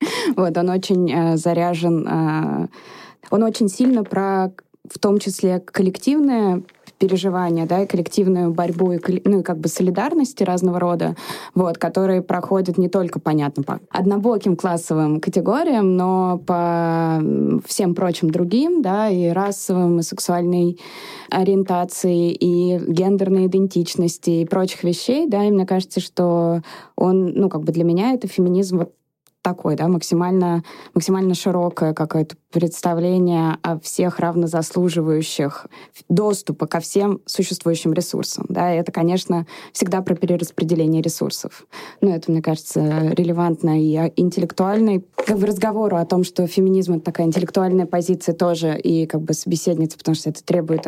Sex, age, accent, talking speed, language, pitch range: female, 20-39, native, 140 wpm, Russian, 165-190 Hz